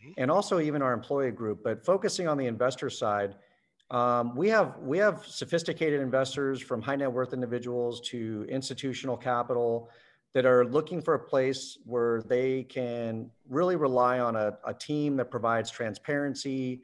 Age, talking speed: 40-59, 160 wpm